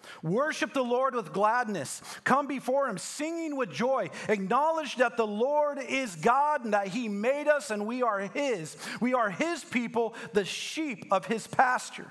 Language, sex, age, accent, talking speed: English, male, 40-59, American, 175 wpm